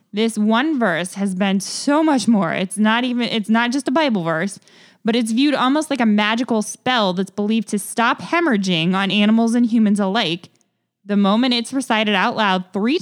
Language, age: English, 10-29